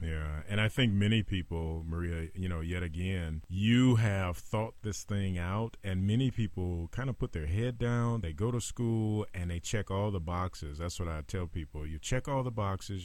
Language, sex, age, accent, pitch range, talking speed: English, male, 30-49, American, 85-115 Hz, 210 wpm